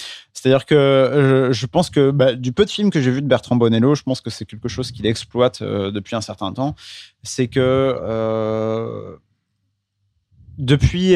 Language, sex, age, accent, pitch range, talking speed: French, male, 30-49, French, 110-140 Hz, 175 wpm